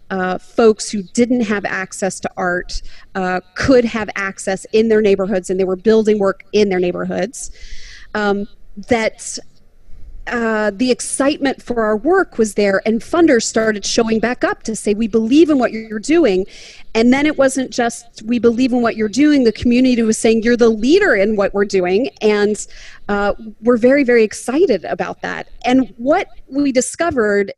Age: 30-49